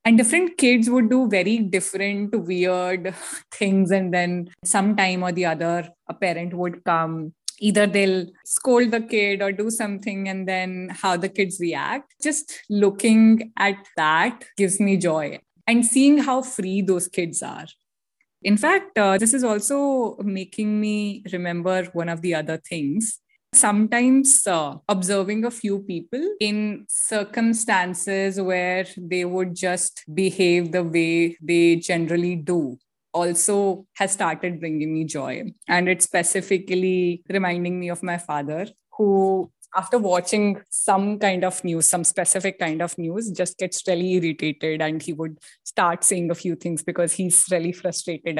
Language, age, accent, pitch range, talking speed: English, 20-39, Indian, 175-210 Hz, 150 wpm